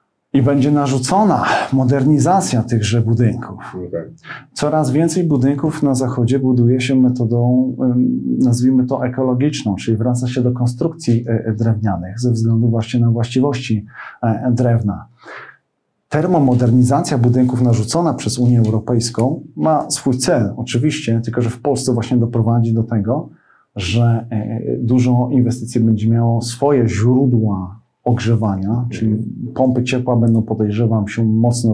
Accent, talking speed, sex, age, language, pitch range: native, 115 wpm, male, 40-59, Polish, 115-130 Hz